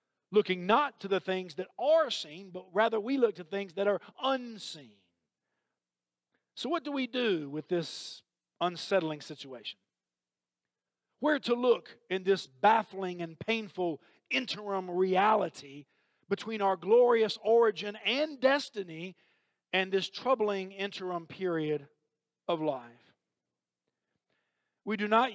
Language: English